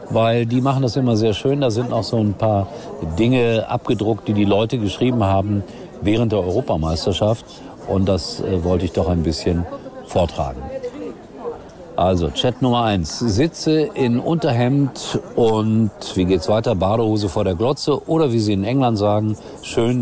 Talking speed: 160 wpm